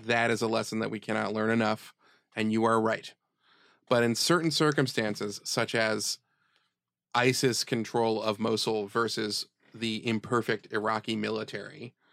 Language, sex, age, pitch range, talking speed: English, male, 30-49, 115-130 Hz, 140 wpm